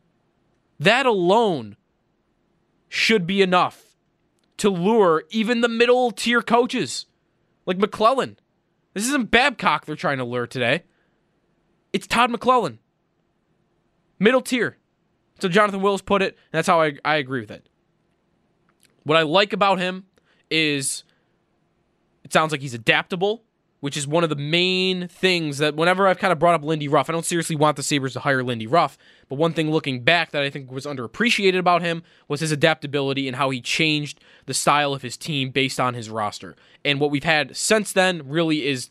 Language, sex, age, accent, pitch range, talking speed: English, male, 20-39, American, 145-190 Hz, 175 wpm